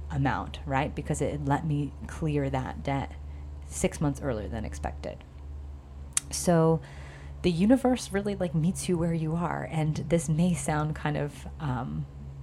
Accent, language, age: American, English, 30-49